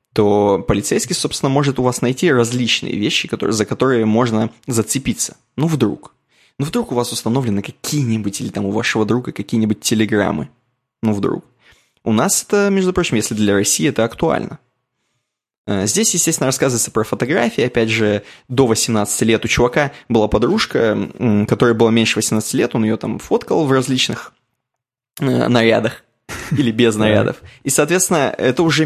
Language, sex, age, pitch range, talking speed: Russian, male, 20-39, 110-135 Hz, 150 wpm